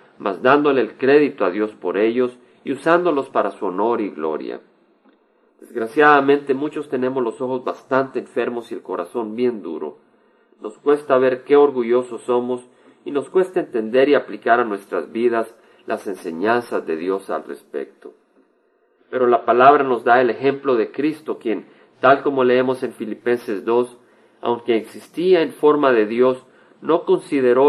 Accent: Mexican